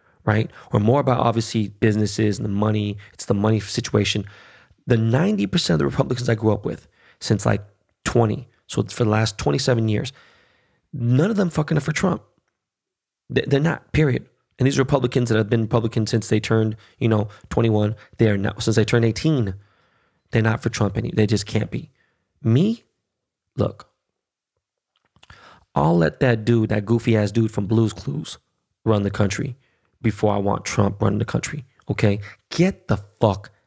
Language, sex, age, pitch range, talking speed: English, male, 20-39, 105-120 Hz, 175 wpm